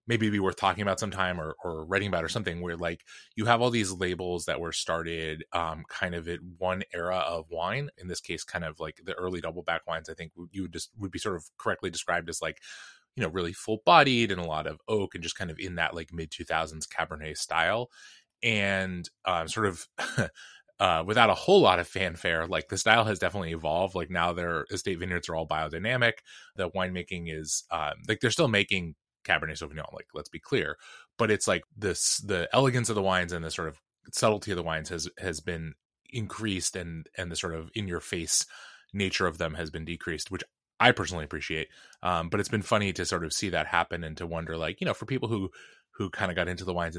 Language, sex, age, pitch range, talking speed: English, male, 20-39, 80-100 Hz, 230 wpm